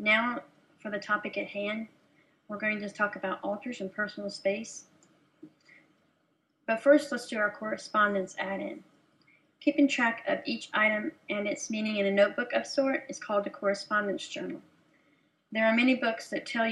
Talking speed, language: 165 wpm, English